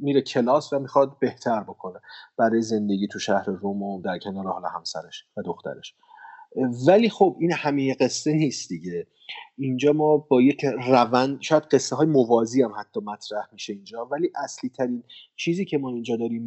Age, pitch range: 30-49, 110-135 Hz